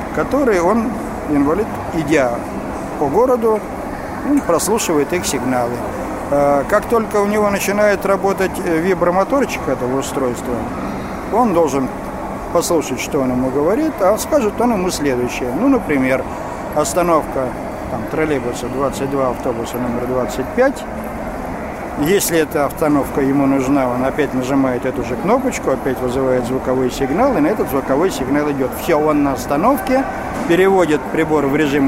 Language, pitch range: Russian, 130-180 Hz